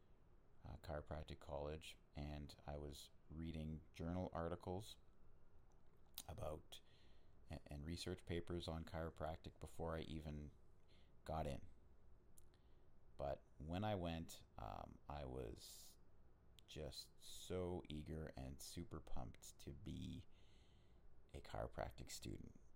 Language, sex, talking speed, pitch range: English, male, 105 wpm, 75-95 Hz